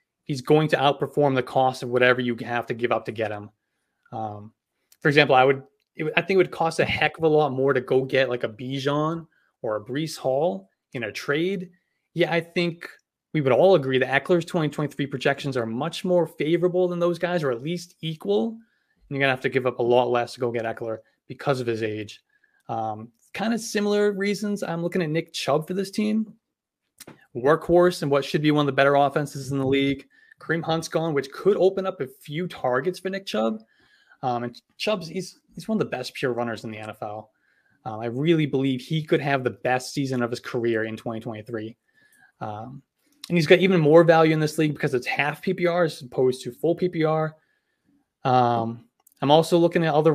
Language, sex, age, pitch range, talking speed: English, male, 20-39, 125-175 Hz, 215 wpm